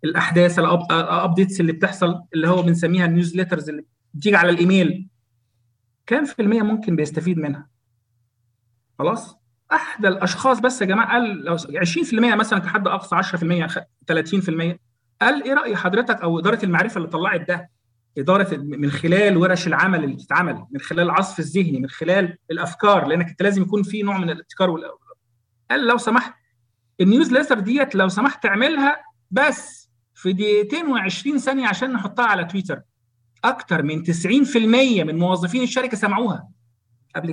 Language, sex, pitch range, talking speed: Arabic, male, 145-215 Hz, 145 wpm